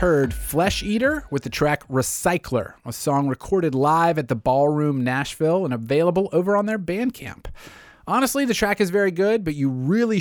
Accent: American